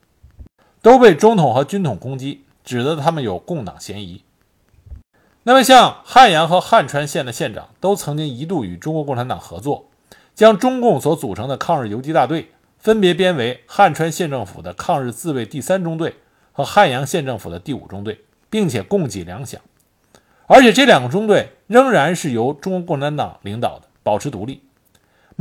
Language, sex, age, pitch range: Chinese, male, 50-69, 135-205 Hz